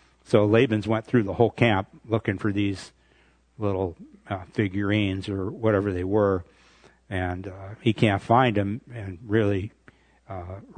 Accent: American